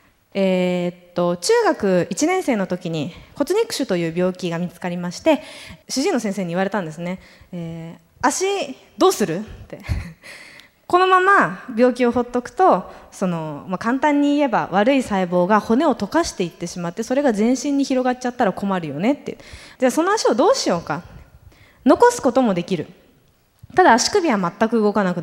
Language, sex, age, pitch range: Japanese, female, 20-39, 180-285 Hz